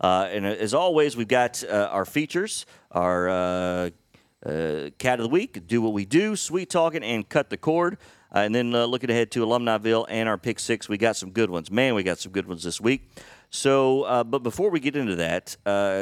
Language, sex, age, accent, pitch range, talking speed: English, male, 40-59, American, 95-120 Hz, 225 wpm